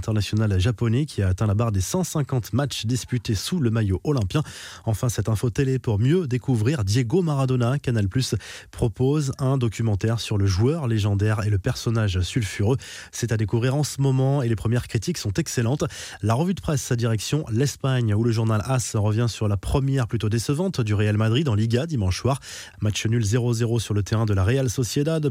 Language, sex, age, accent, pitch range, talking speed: French, male, 20-39, French, 110-135 Hz, 195 wpm